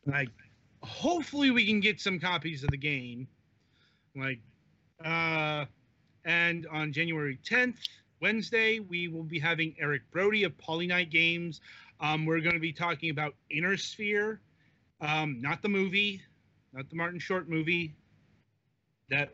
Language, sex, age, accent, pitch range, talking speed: English, male, 30-49, American, 135-180 Hz, 145 wpm